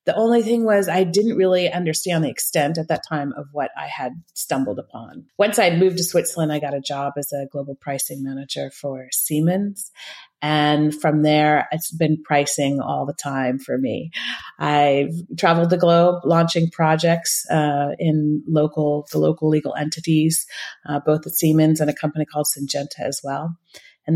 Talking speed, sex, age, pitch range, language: 175 wpm, female, 30-49, 150-185 Hz, English